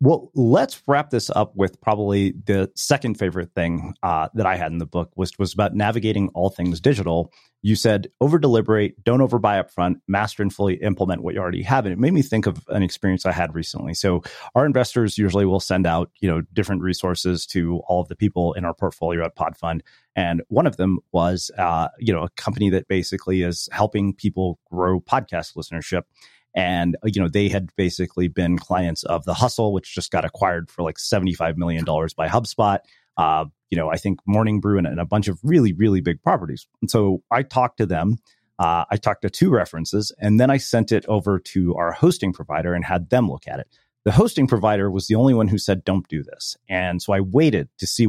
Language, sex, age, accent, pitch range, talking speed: English, male, 30-49, American, 90-110 Hz, 215 wpm